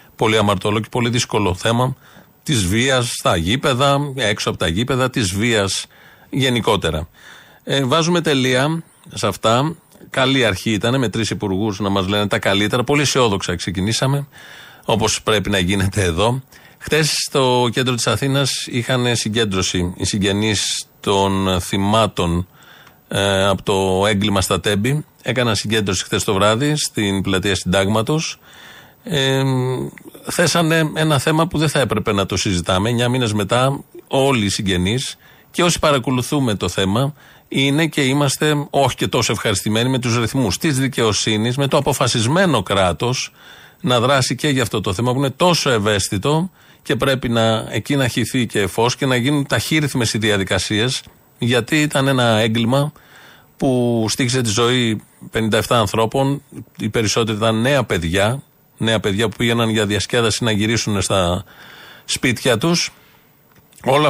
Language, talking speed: Greek, 145 wpm